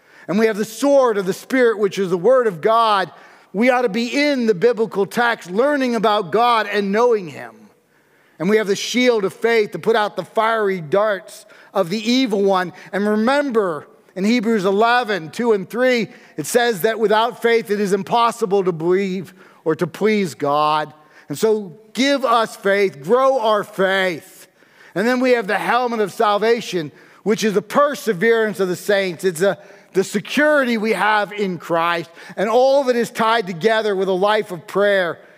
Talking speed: 185 wpm